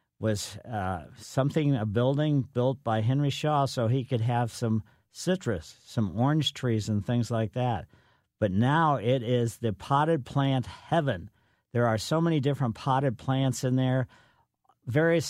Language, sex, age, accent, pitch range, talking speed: English, male, 50-69, American, 110-135 Hz, 155 wpm